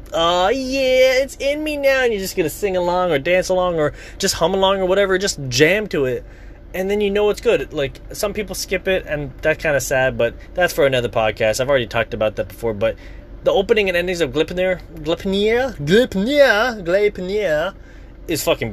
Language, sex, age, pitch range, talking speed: English, male, 20-39, 115-190 Hz, 205 wpm